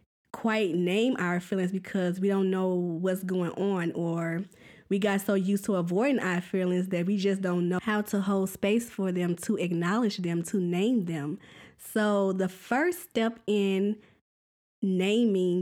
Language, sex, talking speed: English, female, 165 wpm